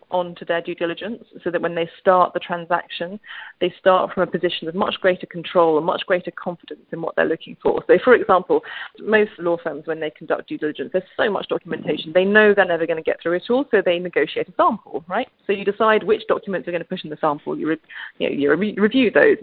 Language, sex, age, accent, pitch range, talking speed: English, female, 30-49, British, 170-220 Hz, 235 wpm